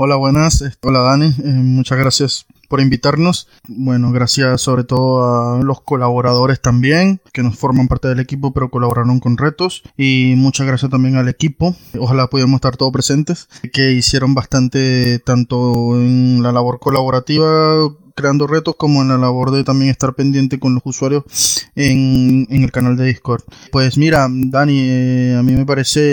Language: Spanish